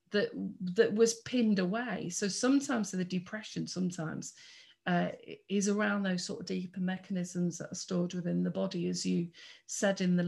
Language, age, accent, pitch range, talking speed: English, 40-59, British, 175-210 Hz, 170 wpm